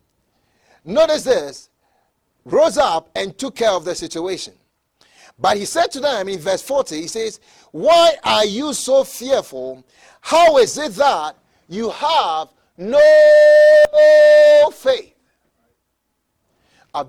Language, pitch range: English, 185-290 Hz